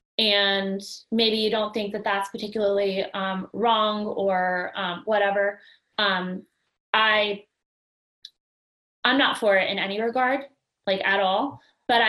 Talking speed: 130 wpm